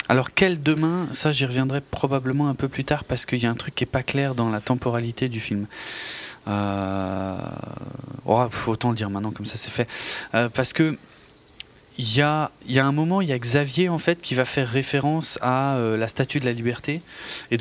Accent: French